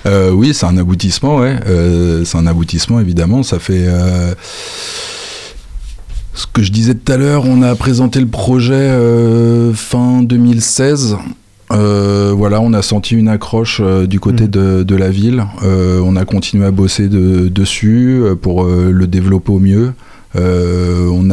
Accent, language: French, French